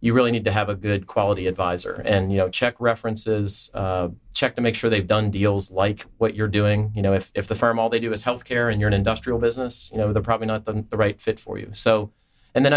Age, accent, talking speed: 30-49, American, 265 wpm